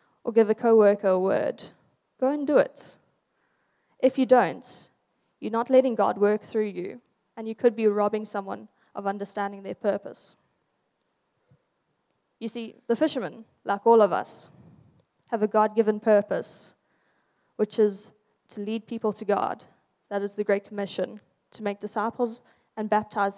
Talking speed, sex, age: 150 wpm, female, 10-29